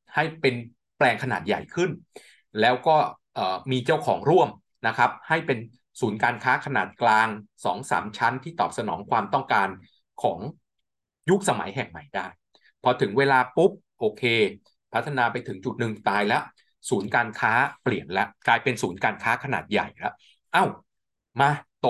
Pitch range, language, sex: 120-145 Hz, Thai, male